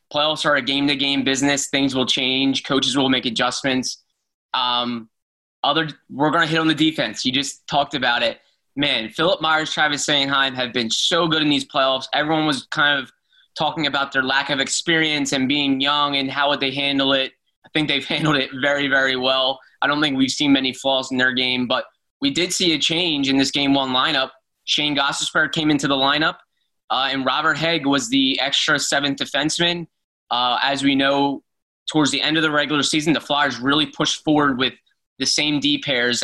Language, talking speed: English, 200 wpm